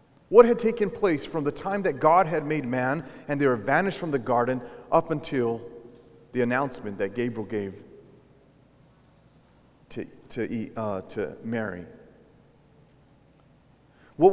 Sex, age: male, 40-59